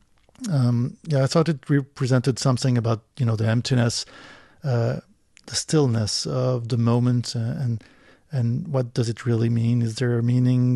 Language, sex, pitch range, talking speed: English, male, 120-145 Hz, 160 wpm